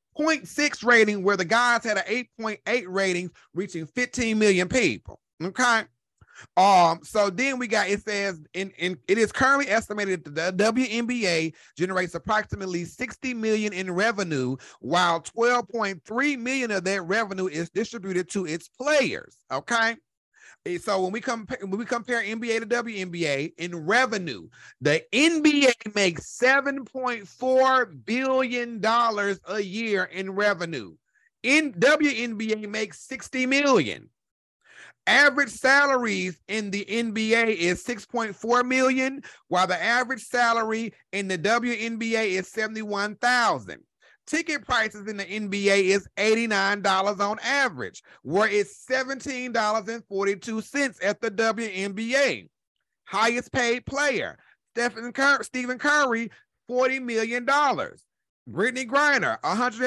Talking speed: 125 wpm